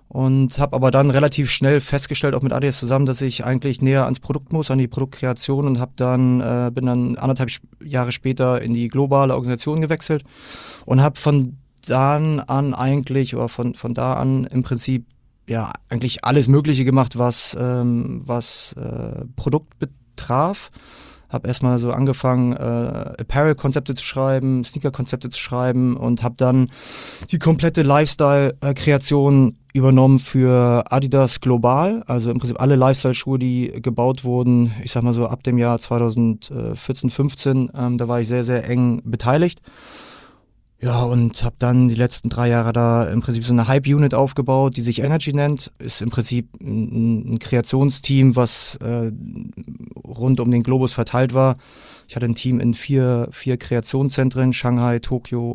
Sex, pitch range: male, 120-135 Hz